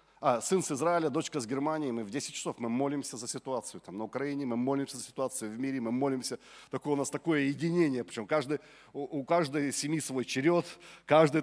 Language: Russian